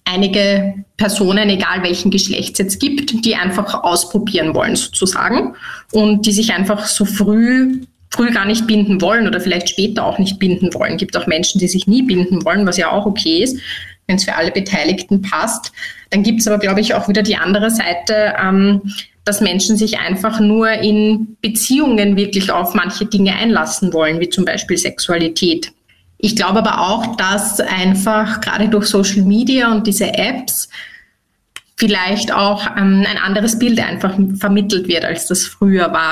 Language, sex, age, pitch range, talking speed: German, female, 20-39, 190-215 Hz, 175 wpm